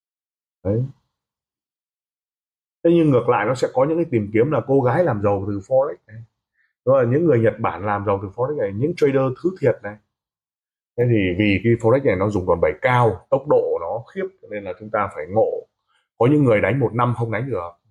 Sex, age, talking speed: male, 20-39, 220 wpm